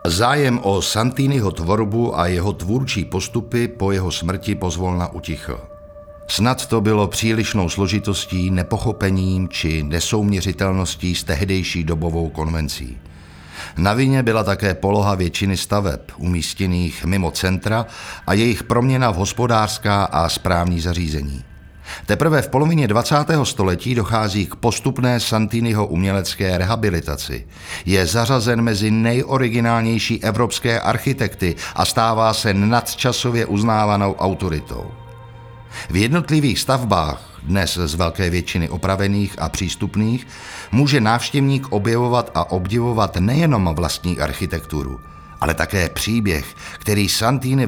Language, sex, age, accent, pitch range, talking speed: Czech, male, 60-79, native, 90-115 Hz, 110 wpm